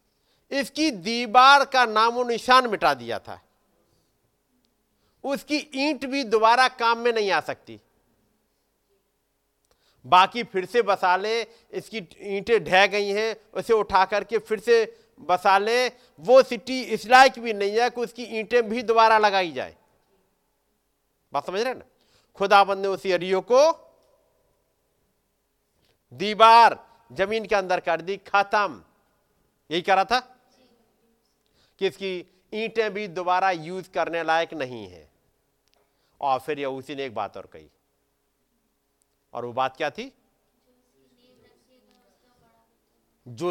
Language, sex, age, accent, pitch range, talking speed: Hindi, male, 50-69, native, 185-245 Hz, 125 wpm